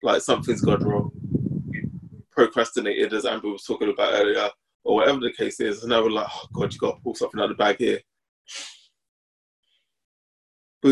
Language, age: English, 20-39